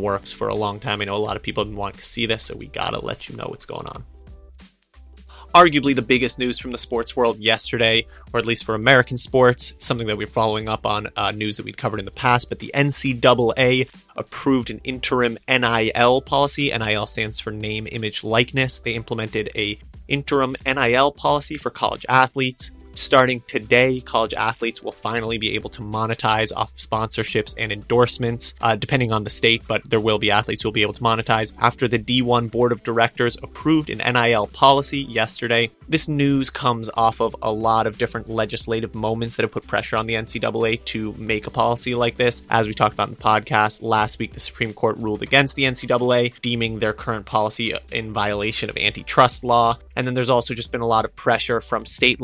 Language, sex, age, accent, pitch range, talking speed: English, male, 30-49, American, 110-125 Hz, 205 wpm